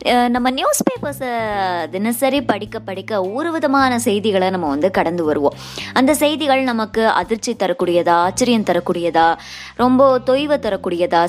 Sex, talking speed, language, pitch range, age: male, 115 wpm, Tamil, 180-255 Hz, 20-39